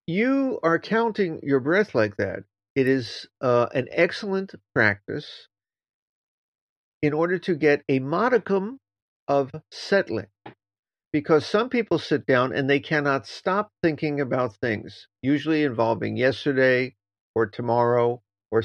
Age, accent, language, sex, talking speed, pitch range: 50-69, American, English, male, 125 wpm, 110-165 Hz